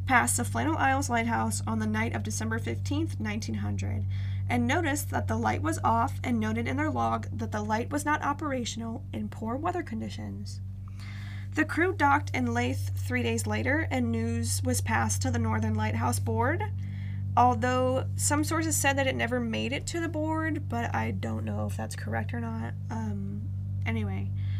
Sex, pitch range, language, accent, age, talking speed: female, 95-115 Hz, English, American, 10-29, 180 wpm